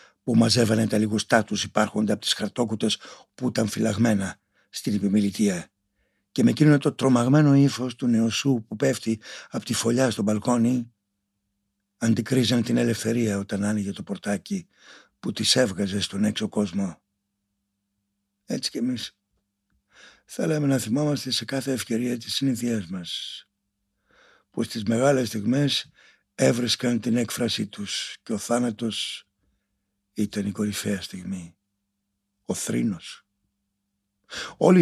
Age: 60-79